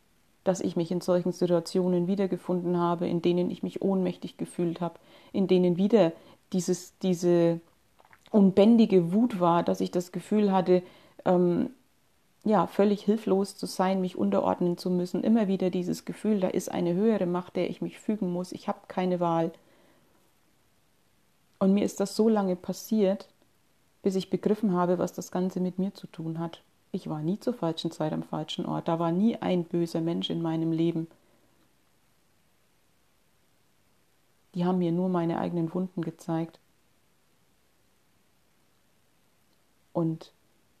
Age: 30-49